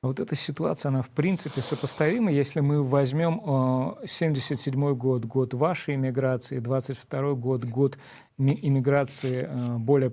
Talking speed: 120 wpm